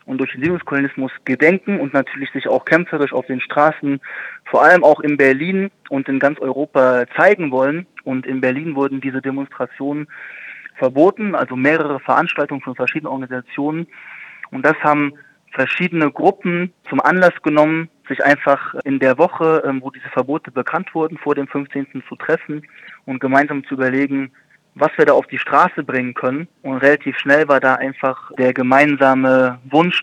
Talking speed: 160 wpm